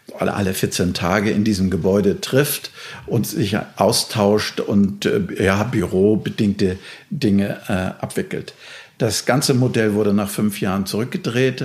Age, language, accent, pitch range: 50-69, German, German, 105-135 Hz